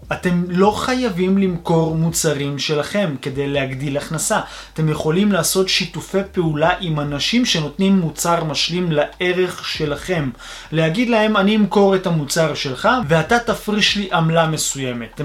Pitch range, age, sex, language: 150-205 Hz, 20-39, male, Hebrew